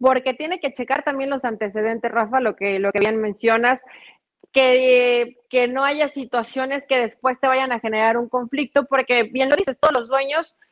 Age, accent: 30-49, Mexican